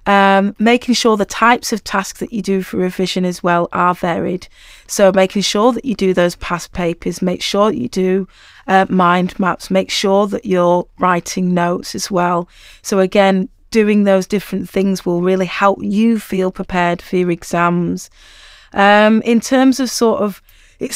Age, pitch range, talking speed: 30-49, 185-220 Hz, 180 wpm